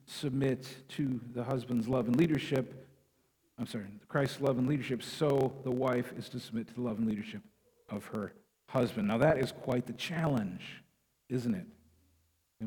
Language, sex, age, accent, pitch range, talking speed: English, male, 50-69, American, 120-155 Hz, 170 wpm